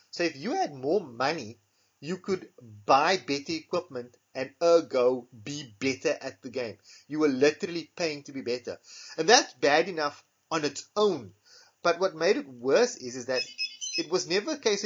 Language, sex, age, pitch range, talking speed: English, male, 30-49, 130-190 Hz, 180 wpm